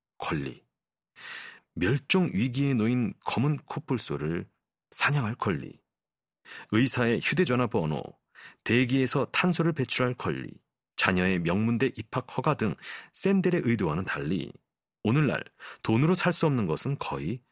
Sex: male